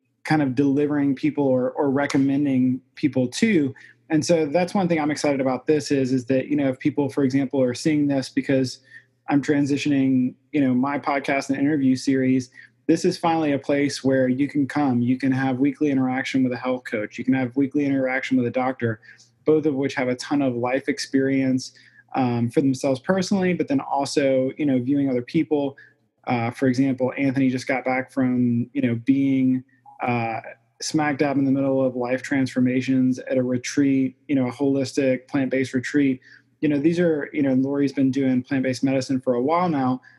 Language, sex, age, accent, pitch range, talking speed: English, male, 20-39, American, 130-145 Hz, 195 wpm